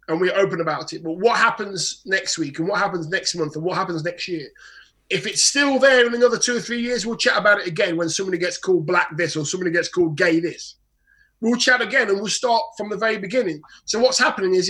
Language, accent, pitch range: English, British, 180-245 Hz